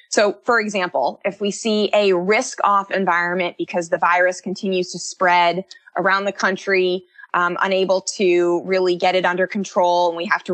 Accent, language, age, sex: American, English, 20-39, female